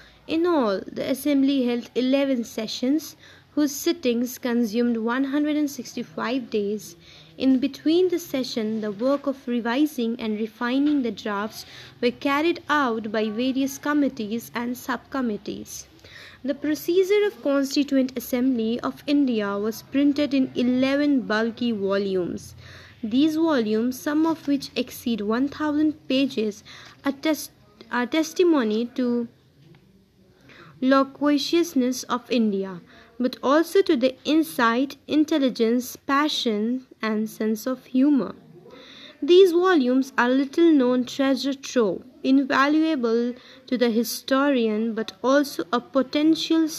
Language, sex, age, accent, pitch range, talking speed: English, female, 20-39, Indian, 230-290 Hz, 110 wpm